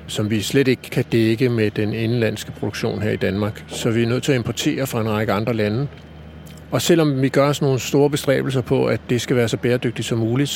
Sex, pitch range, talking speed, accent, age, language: male, 105-140 Hz, 240 wpm, native, 60-79, Danish